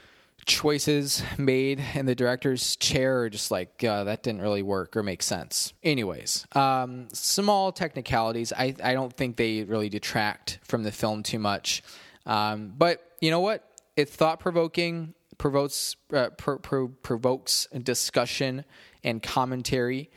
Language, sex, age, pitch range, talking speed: English, male, 20-39, 115-150 Hz, 145 wpm